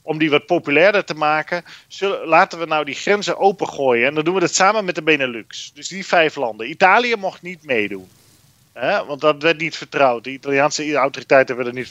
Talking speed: 205 wpm